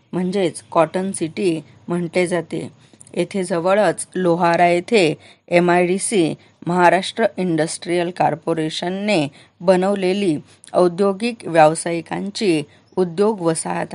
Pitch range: 165-190 Hz